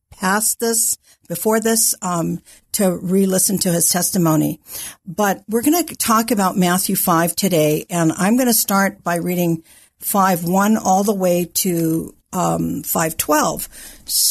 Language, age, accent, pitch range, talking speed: English, 50-69, American, 170-210 Hz, 145 wpm